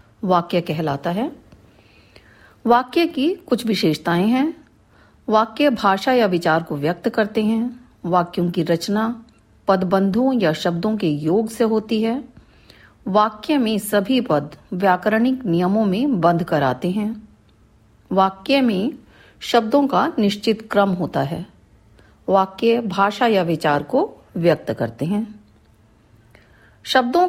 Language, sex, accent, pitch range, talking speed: Hindi, female, native, 160-225 Hz, 120 wpm